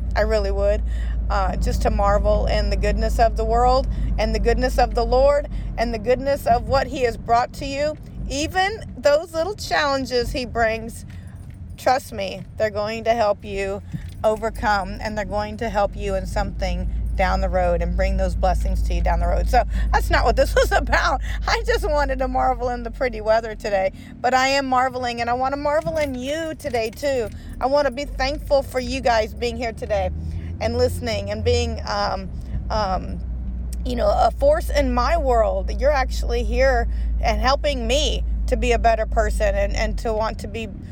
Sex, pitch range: female, 210-275 Hz